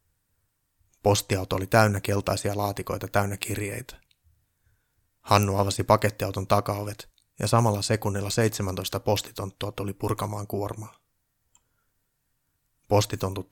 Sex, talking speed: male, 90 wpm